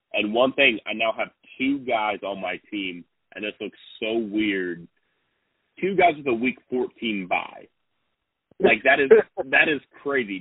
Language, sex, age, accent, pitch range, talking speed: English, male, 30-49, American, 95-125 Hz, 165 wpm